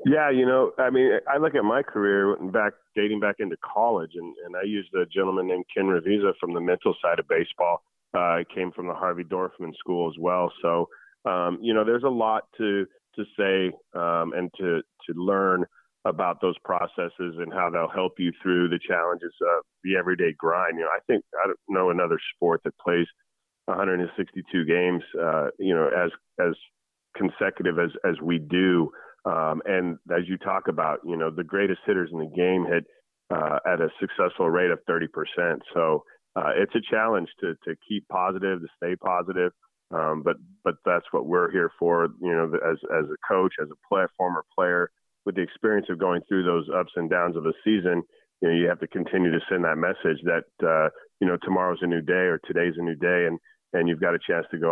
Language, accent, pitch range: English, American, 85-95 Hz